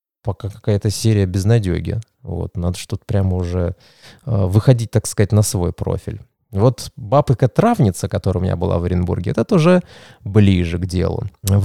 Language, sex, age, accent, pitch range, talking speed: Russian, male, 20-39, native, 100-140 Hz, 160 wpm